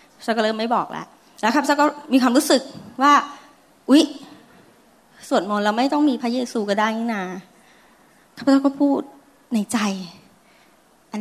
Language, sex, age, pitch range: Thai, female, 20-39, 200-255 Hz